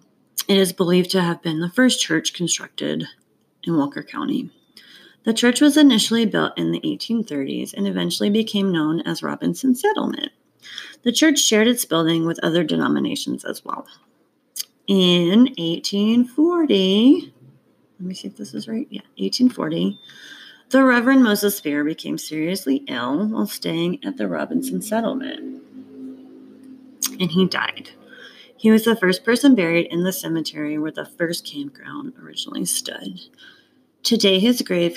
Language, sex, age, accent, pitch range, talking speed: English, female, 30-49, American, 170-255 Hz, 140 wpm